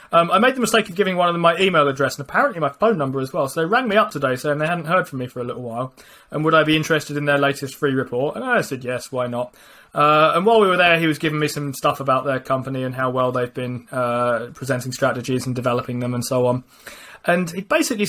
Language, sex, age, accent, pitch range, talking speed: English, male, 20-39, British, 130-175 Hz, 280 wpm